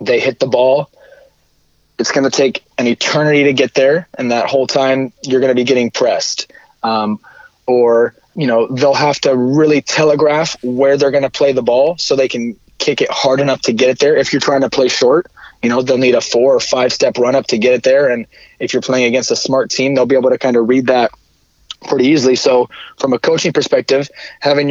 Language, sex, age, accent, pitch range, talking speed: English, male, 20-39, American, 125-145 Hz, 225 wpm